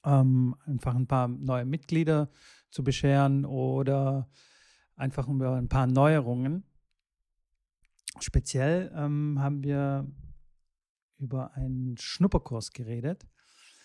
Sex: male